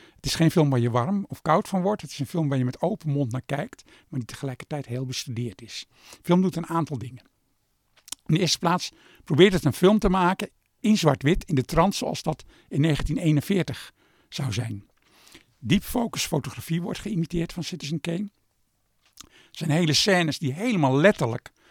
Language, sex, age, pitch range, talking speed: Dutch, male, 60-79, 135-175 Hz, 195 wpm